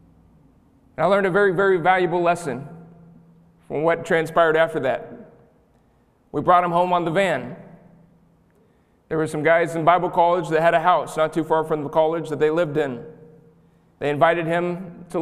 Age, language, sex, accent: 40-59, English, male, American